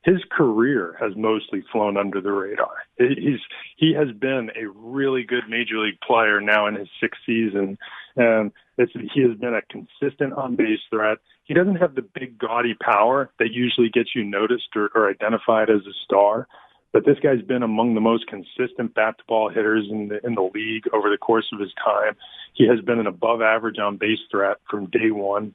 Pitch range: 110-125 Hz